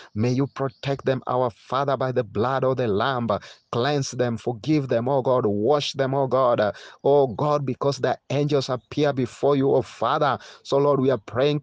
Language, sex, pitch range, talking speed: English, male, 105-135 Hz, 190 wpm